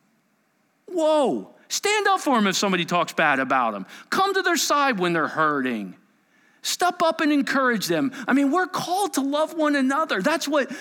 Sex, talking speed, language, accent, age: male, 185 wpm, English, American, 40-59